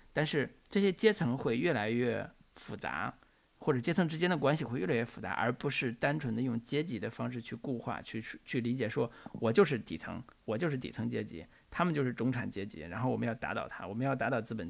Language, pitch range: Chinese, 115-155 Hz